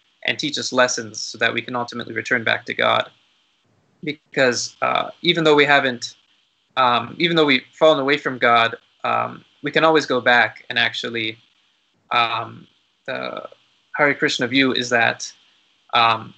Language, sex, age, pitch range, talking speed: English, male, 20-39, 115-140 Hz, 160 wpm